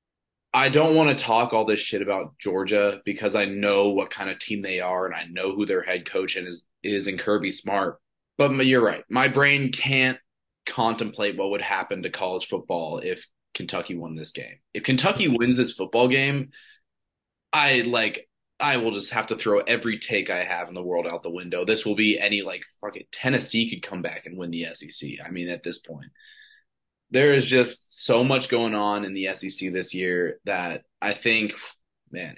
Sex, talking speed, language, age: male, 205 wpm, English, 20-39